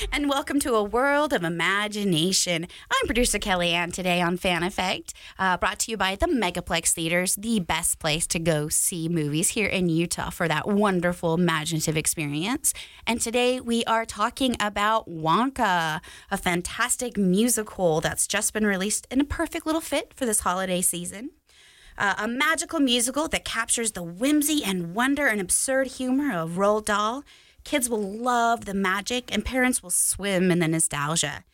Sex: female